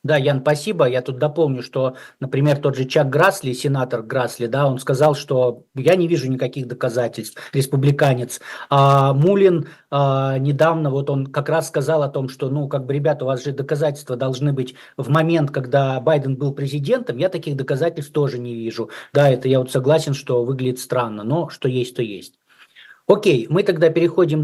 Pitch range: 135-160 Hz